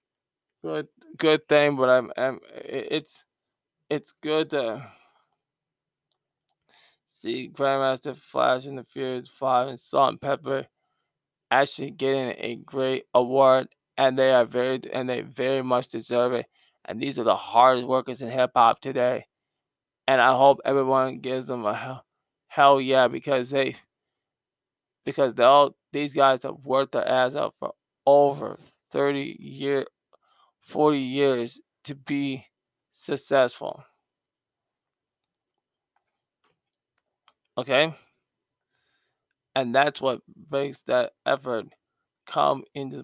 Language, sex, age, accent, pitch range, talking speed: English, male, 20-39, American, 125-140 Hz, 120 wpm